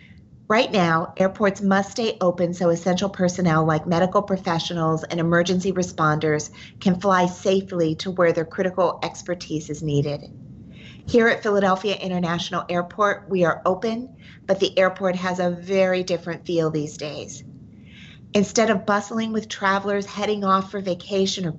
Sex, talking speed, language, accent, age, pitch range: female, 145 wpm, English, American, 40-59, 165-195 Hz